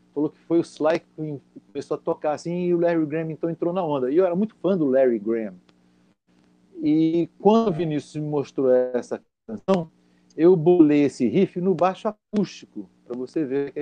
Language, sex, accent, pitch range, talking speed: Portuguese, male, Brazilian, 120-175 Hz, 195 wpm